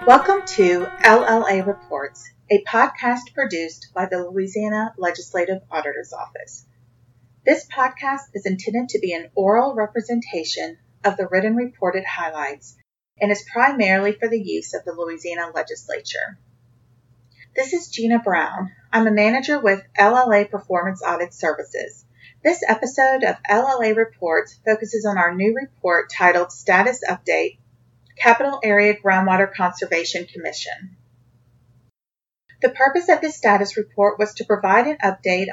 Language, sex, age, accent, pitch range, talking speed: English, female, 40-59, American, 175-225 Hz, 130 wpm